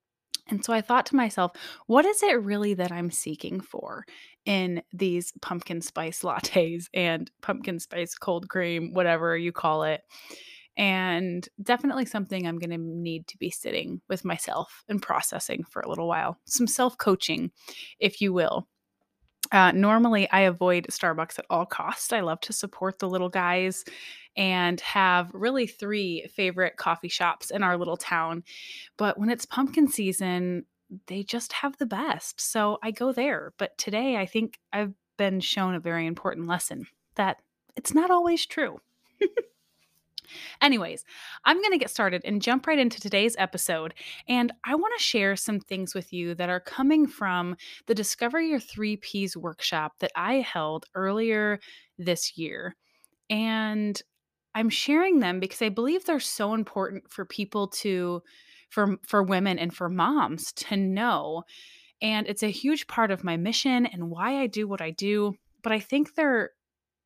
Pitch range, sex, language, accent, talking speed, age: 180-235 Hz, female, English, American, 165 wpm, 20-39